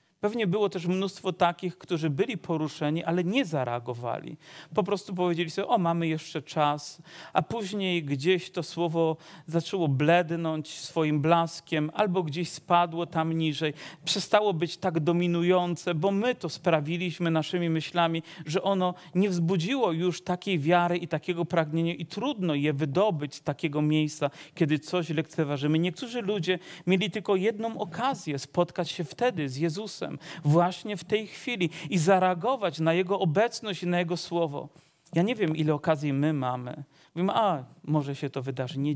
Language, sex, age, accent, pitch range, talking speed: Polish, male, 40-59, native, 155-185 Hz, 155 wpm